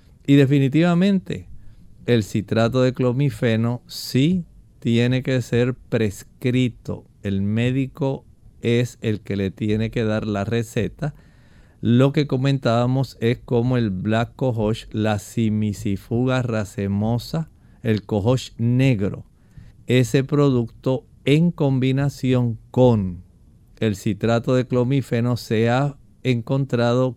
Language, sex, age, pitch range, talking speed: Spanish, male, 50-69, 110-135 Hz, 105 wpm